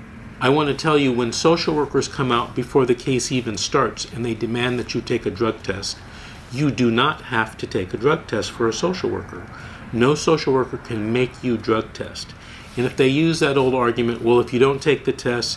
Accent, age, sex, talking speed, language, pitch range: American, 50-69, male, 225 wpm, English, 115-140 Hz